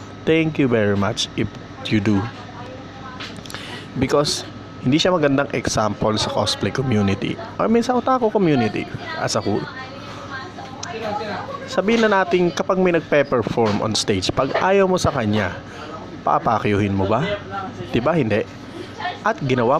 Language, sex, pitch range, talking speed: Filipino, male, 110-180 Hz, 130 wpm